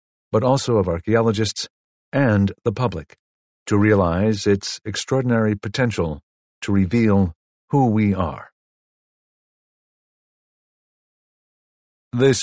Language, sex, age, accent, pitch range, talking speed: English, male, 50-69, American, 95-110 Hz, 85 wpm